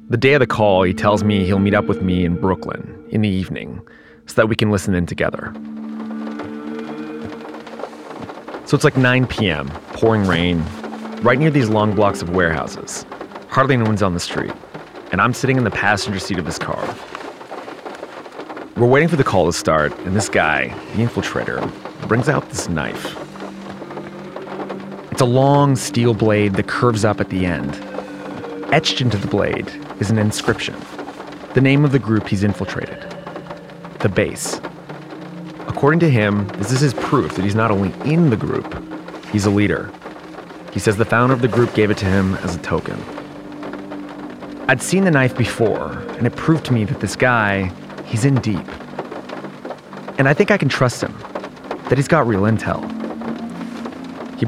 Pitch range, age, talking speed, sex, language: 95-130 Hz, 30-49, 175 wpm, male, English